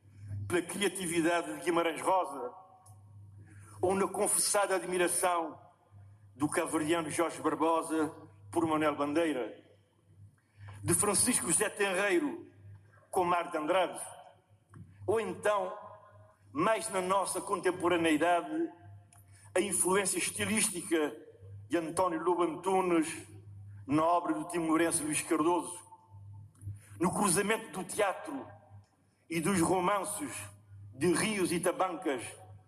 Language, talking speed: Portuguese, 95 wpm